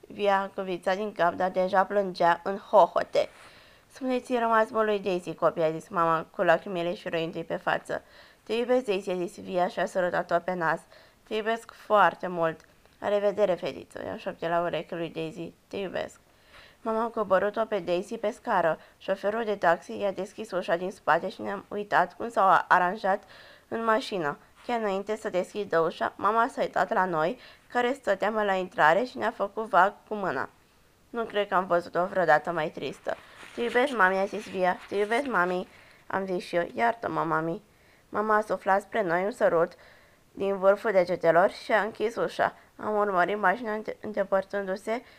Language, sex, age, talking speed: Romanian, female, 20-39, 180 wpm